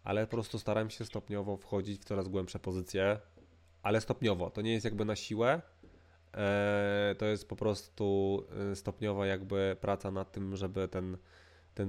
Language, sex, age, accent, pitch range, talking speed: Polish, male, 20-39, native, 95-110 Hz, 155 wpm